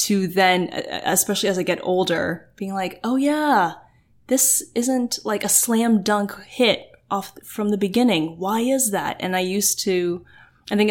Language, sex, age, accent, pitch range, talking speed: English, female, 10-29, American, 175-210 Hz, 170 wpm